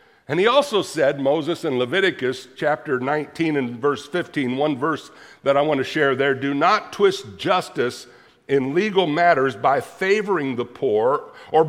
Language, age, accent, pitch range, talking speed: English, 60-79, American, 145-195 Hz, 165 wpm